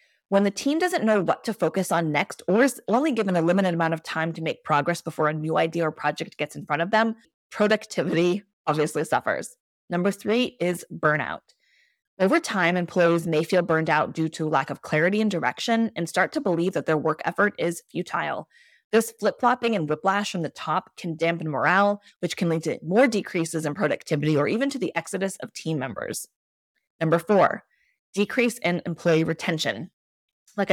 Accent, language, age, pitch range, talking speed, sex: American, English, 20-39, 160-205 Hz, 190 wpm, female